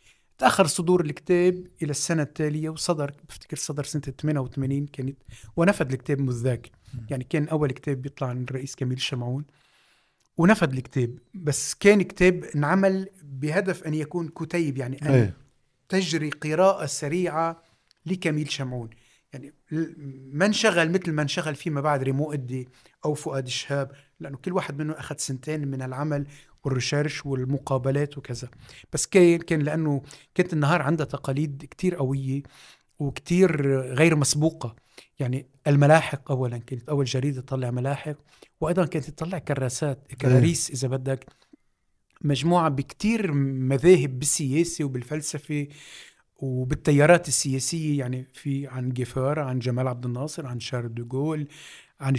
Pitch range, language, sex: 135-160 Hz, Arabic, male